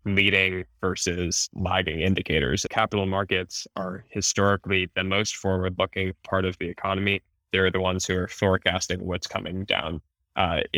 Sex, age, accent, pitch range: male, 10-29, American, 90-100 Hz